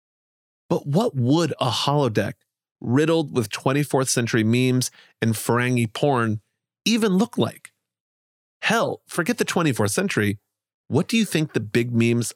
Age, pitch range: 30-49, 105-135 Hz